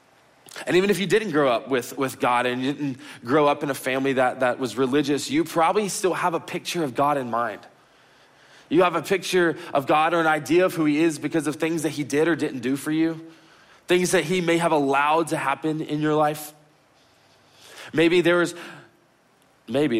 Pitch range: 140-175 Hz